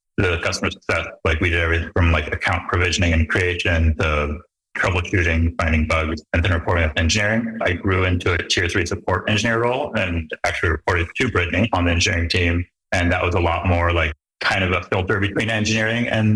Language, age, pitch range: English, 30-49, 85-100 Hz